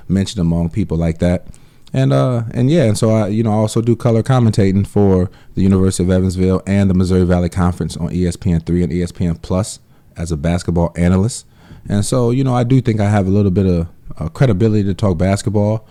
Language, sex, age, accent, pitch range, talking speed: English, male, 30-49, American, 90-110 Hz, 210 wpm